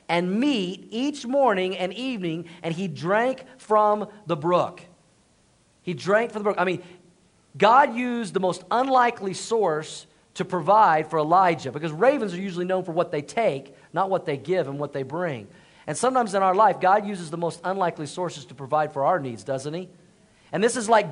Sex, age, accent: male, 40-59, American